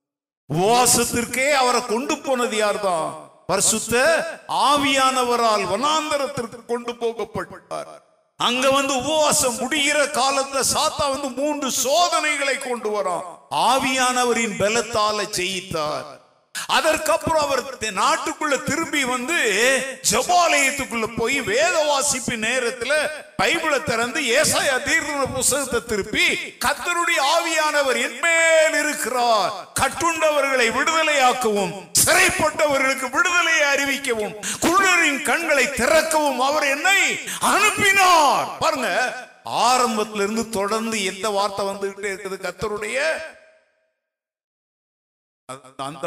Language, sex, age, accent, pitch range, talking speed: Tamil, male, 50-69, native, 205-305 Hz, 60 wpm